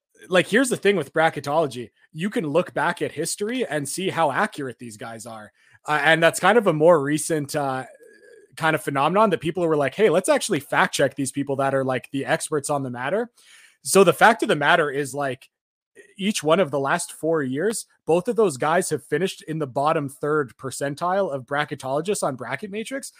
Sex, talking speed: male, 210 wpm